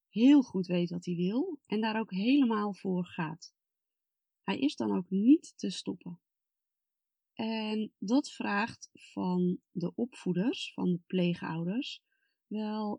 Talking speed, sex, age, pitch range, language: 135 wpm, female, 30-49, 175-225 Hz, Dutch